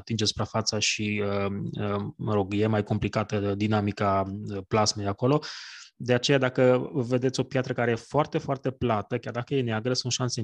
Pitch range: 105-125 Hz